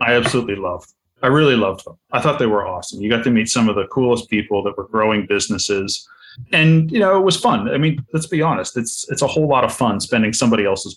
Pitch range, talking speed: 100-125 Hz, 250 wpm